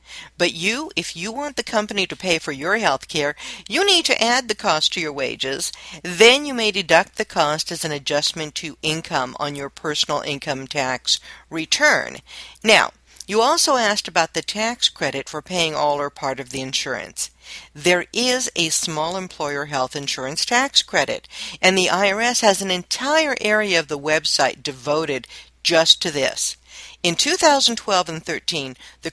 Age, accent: 50-69, American